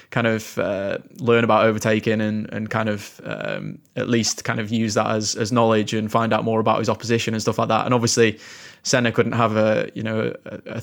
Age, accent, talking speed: 20-39, British, 225 wpm